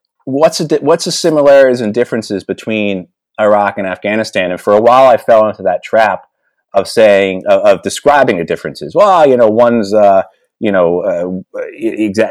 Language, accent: English, American